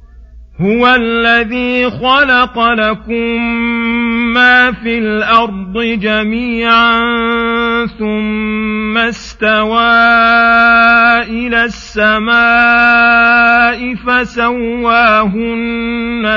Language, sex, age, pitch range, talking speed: Arabic, male, 40-59, 215-235 Hz, 50 wpm